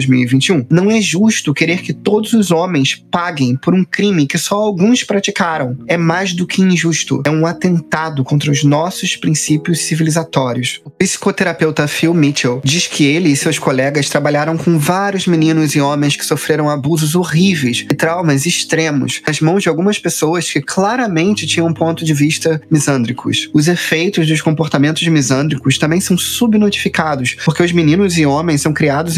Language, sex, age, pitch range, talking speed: Portuguese, male, 20-39, 145-180 Hz, 170 wpm